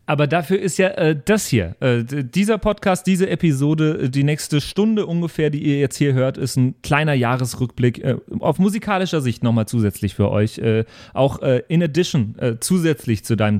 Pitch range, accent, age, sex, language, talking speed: 120-170 Hz, German, 40-59, male, German, 185 wpm